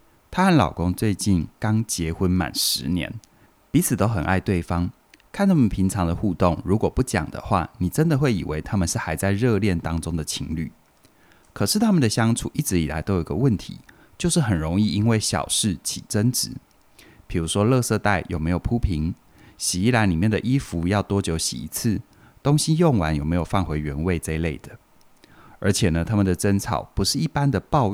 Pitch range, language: 85-110 Hz, Chinese